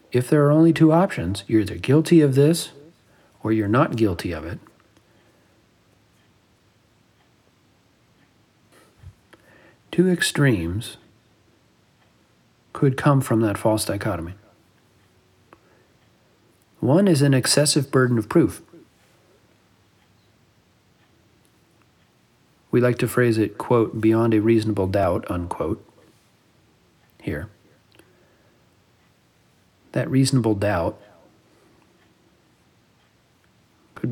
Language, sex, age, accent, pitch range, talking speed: English, male, 50-69, American, 105-130 Hz, 85 wpm